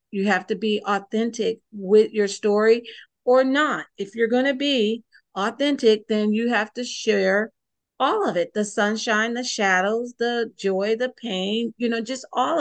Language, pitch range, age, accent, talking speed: English, 205-235 Hz, 50-69, American, 170 wpm